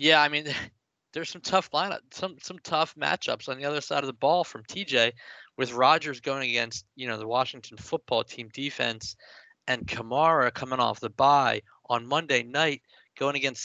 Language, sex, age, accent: English, male, 20-39, American